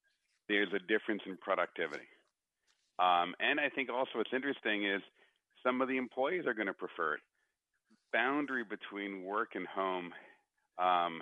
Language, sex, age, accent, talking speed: English, male, 40-59, American, 150 wpm